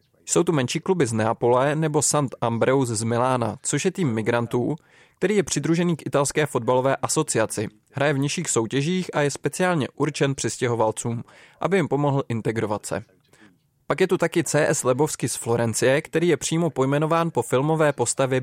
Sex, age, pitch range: male, 20-39, 120-160 Hz